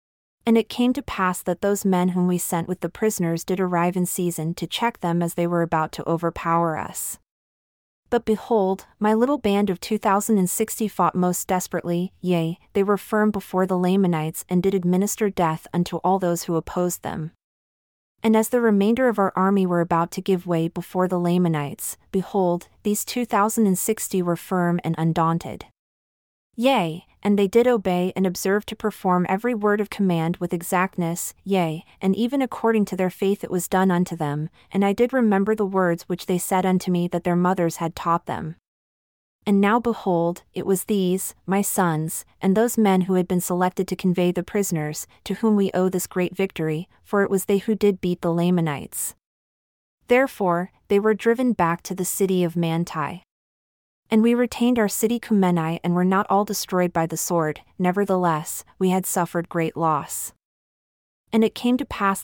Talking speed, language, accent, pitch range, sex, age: 190 wpm, English, American, 175-205 Hz, female, 30-49